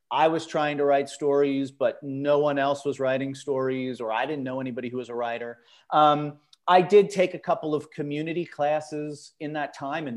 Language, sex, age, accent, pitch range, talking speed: English, male, 40-59, American, 130-160 Hz, 205 wpm